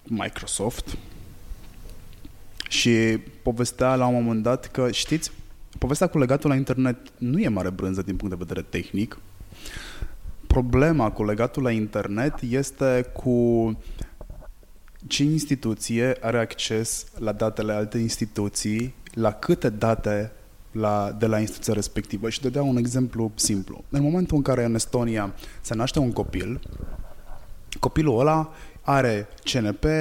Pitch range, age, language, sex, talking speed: 110-145 Hz, 20-39, Romanian, male, 130 wpm